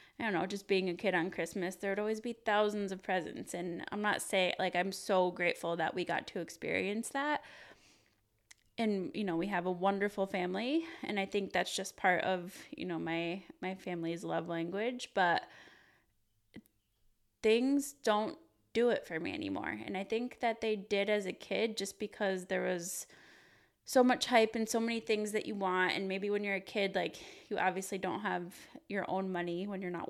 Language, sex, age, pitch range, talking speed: English, female, 20-39, 180-215 Hz, 200 wpm